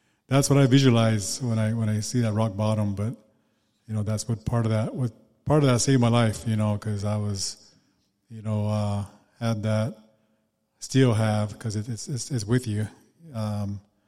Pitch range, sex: 105-115 Hz, male